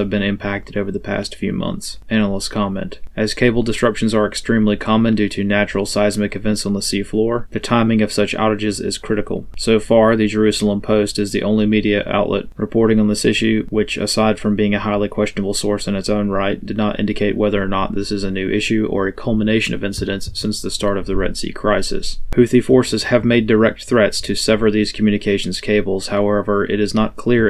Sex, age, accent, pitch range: male, 30-49, American, 105-110 Hz